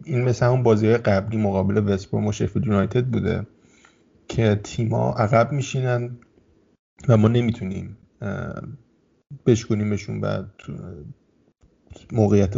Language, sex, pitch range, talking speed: Persian, male, 105-120 Hz, 95 wpm